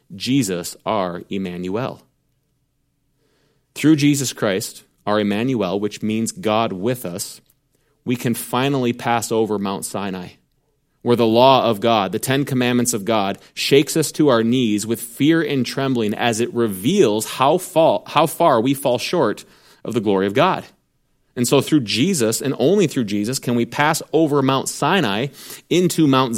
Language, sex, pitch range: English, male, 110-140 Hz